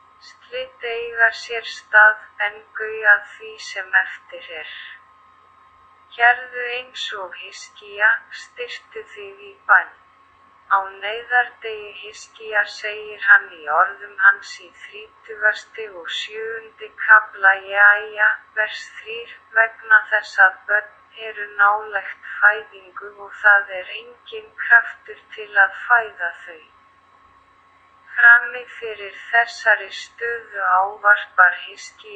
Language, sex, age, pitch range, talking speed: Portuguese, female, 20-39, 200-230 Hz, 110 wpm